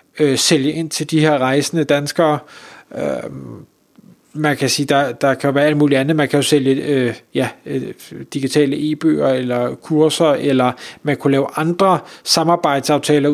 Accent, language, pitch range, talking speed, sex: native, Danish, 140-175 Hz, 160 wpm, male